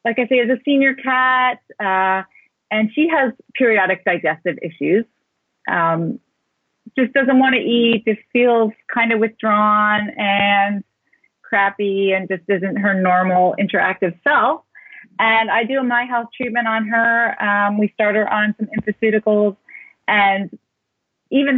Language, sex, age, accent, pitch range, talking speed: English, female, 30-49, American, 175-230 Hz, 145 wpm